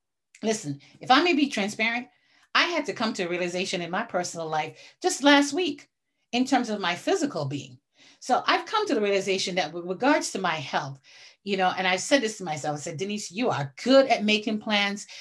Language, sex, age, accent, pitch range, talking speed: English, female, 40-59, American, 185-255 Hz, 215 wpm